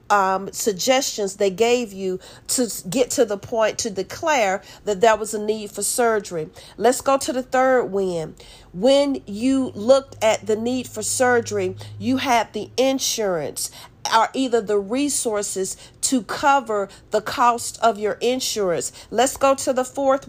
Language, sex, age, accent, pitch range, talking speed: English, female, 40-59, American, 210-260 Hz, 155 wpm